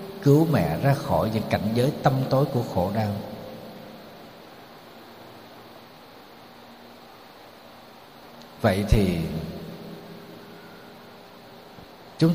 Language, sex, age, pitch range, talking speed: Vietnamese, male, 60-79, 105-145 Hz, 75 wpm